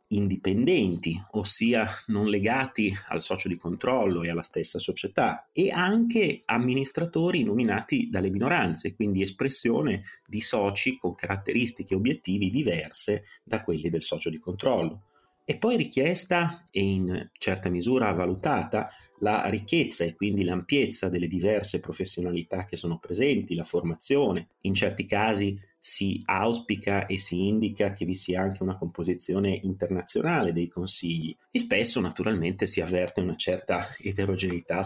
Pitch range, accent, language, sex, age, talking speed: 90-110 Hz, native, Italian, male, 30-49, 135 wpm